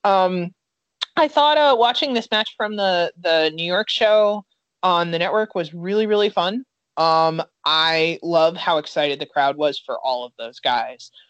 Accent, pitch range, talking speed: American, 160-230 Hz, 175 wpm